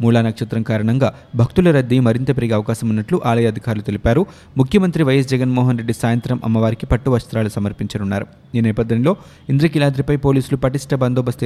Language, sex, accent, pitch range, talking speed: Telugu, male, native, 115-135 Hz, 130 wpm